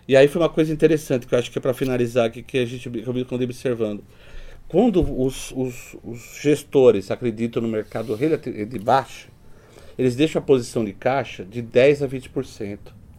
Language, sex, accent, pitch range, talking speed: Portuguese, male, Brazilian, 105-135 Hz, 185 wpm